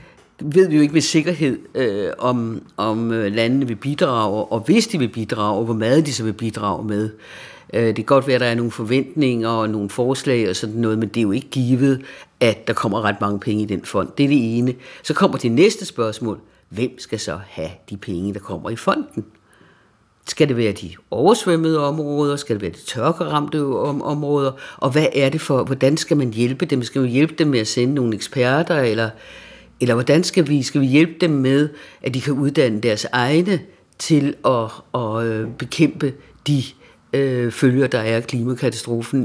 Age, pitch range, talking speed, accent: 60-79, 115-155 Hz, 205 wpm, native